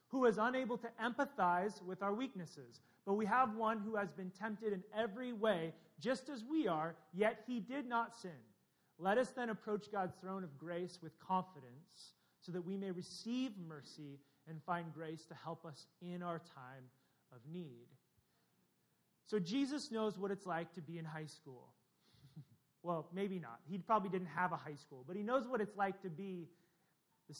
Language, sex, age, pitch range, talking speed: English, male, 30-49, 170-235 Hz, 185 wpm